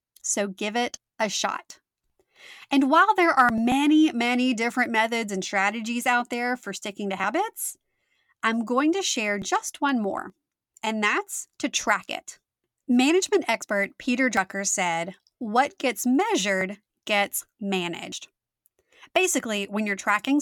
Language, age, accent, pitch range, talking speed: English, 30-49, American, 205-285 Hz, 140 wpm